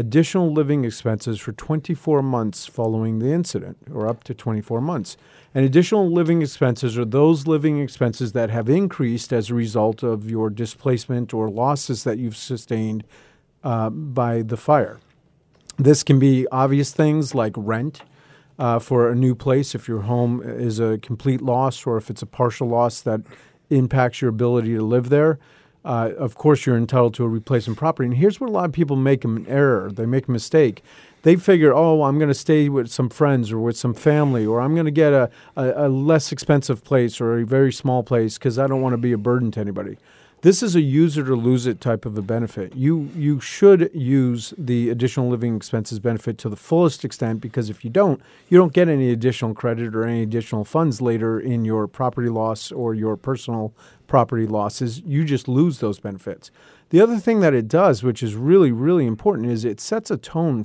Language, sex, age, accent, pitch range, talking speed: English, male, 40-59, American, 115-145 Hz, 200 wpm